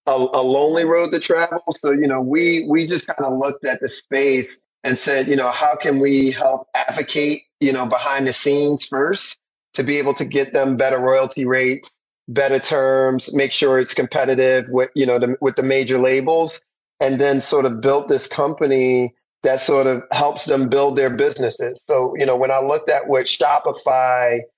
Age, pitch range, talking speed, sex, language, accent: 30-49, 130-145 Hz, 195 wpm, male, English, American